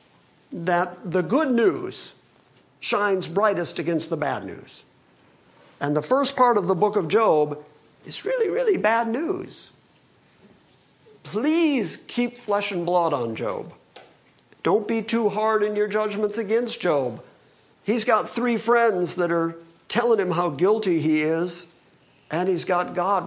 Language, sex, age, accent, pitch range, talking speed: English, male, 50-69, American, 170-230 Hz, 145 wpm